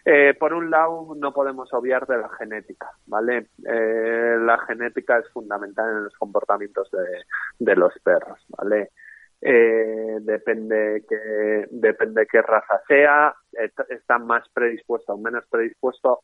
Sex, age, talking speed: male, 20-39, 145 wpm